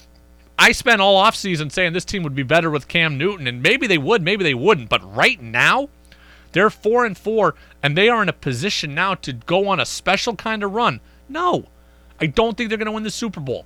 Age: 30-49